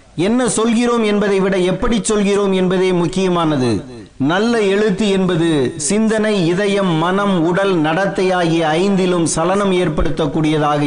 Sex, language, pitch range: male, Tamil, 165-205 Hz